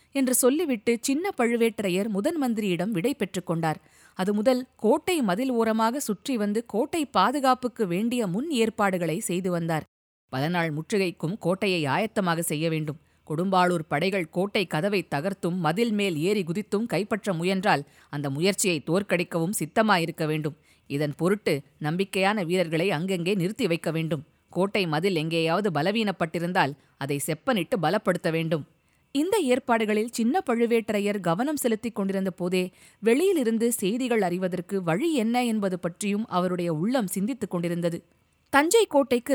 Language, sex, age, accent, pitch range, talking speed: Tamil, female, 20-39, native, 175-235 Hz, 115 wpm